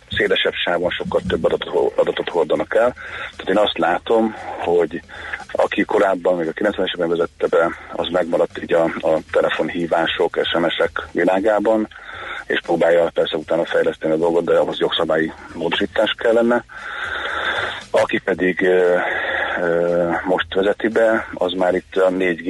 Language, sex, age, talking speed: Hungarian, male, 40-59, 140 wpm